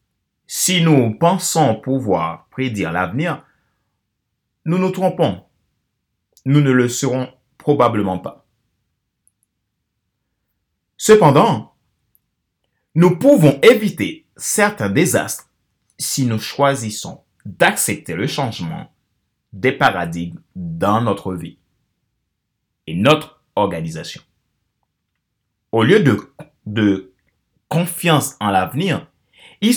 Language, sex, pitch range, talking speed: French, male, 100-150 Hz, 85 wpm